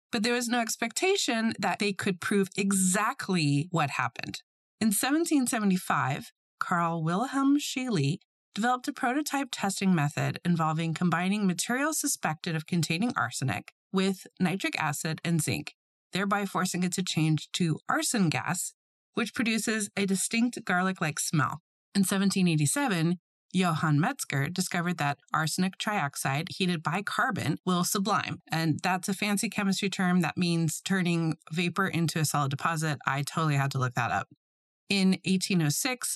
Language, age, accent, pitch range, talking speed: English, 30-49, American, 155-210 Hz, 140 wpm